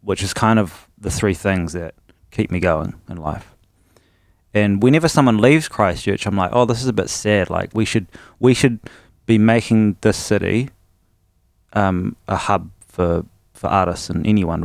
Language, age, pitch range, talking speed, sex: English, 20-39, 90-105 Hz, 175 wpm, male